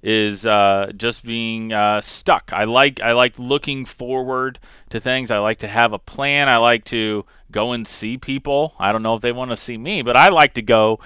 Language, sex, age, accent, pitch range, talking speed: English, male, 30-49, American, 105-130 Hz, 225 wpm